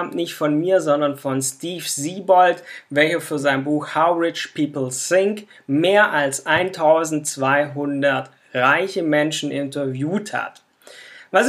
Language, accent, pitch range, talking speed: German, German, 145-195 Hz, 120 wpm